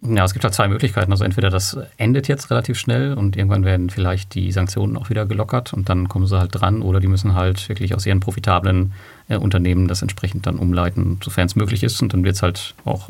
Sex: male